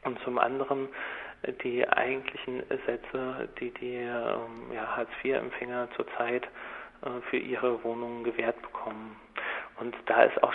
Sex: male